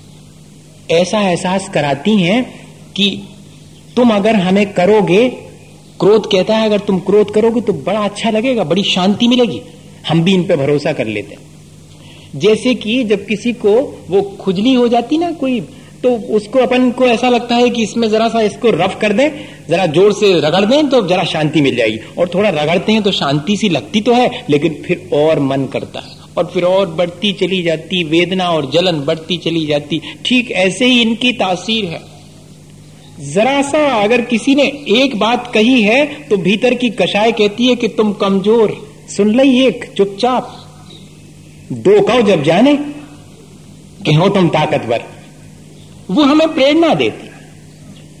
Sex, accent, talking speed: male, native, 170 wpm